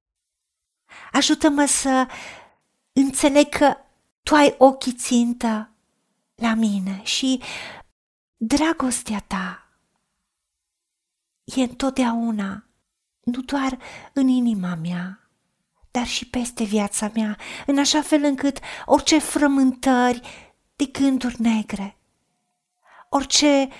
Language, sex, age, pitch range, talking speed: Romanian, female, 40-59, 210-270 Hz, 90 wpm